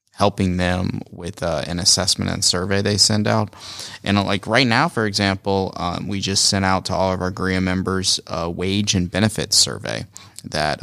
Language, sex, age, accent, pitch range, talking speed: English, male, 30-49, American, 85-100 Hz, 190 wpm